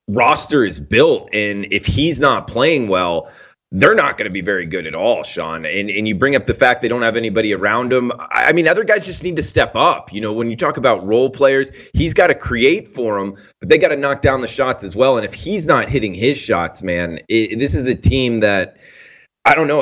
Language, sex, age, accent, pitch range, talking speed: English, male, 30-49, American, 100-120 Hz, 250 wpm